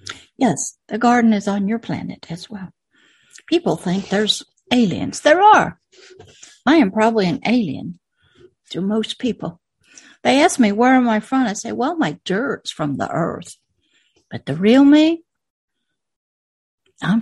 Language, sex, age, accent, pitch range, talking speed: English, female, 60-79, American, 190-275 Hz, 150 wpm